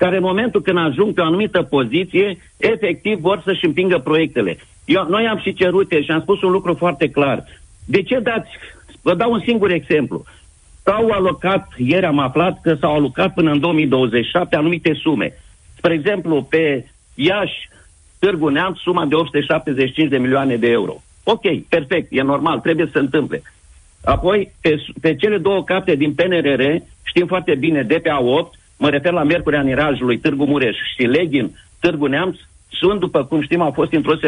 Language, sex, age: Romanian, male, 50-69